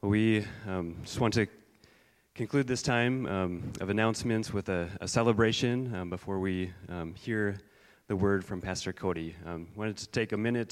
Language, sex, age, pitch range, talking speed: English, male, 30-49, 95-115 Hz, 180 wpm